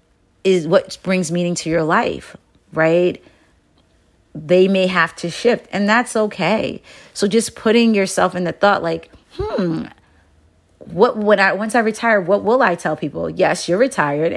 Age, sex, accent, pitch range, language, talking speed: 30-49, female, American, 155-205 Hz, English, 165 wpm